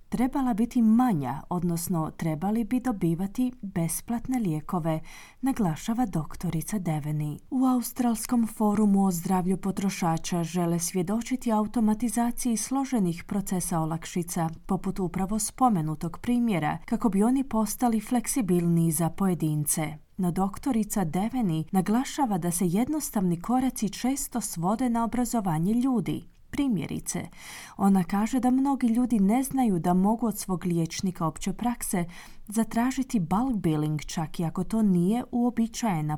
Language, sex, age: Croatian, female, 30-49